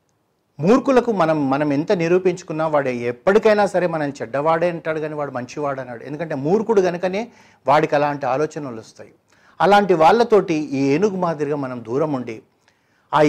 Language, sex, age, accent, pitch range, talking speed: Telugu, male, 60-79, native, 130-170 Hz, 135 wpm